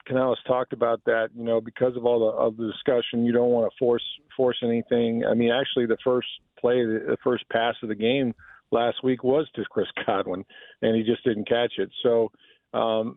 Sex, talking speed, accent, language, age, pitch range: male, 210 wpm, American, English, 50-69, 115-140 Hz